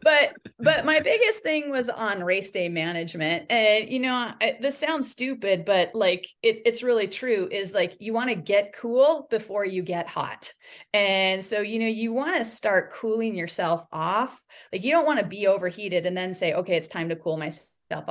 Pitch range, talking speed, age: 175-220 Hz, 200 wpm, 30-49